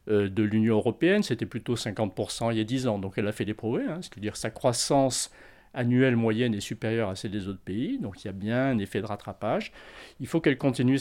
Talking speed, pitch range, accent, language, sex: 255 wpm, 105-125 Hz, French, French, male